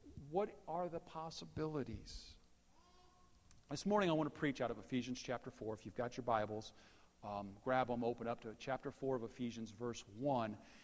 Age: 40-59